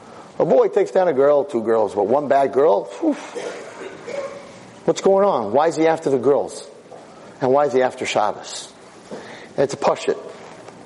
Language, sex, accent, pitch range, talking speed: English, male, American, 135-195 Hz, 180 wpm